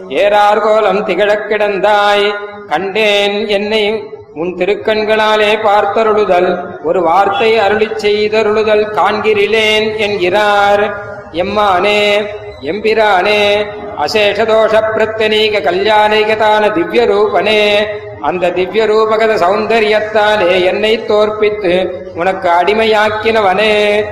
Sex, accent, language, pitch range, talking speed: male, native, Tamil, 205-220 Hz, 70 wpm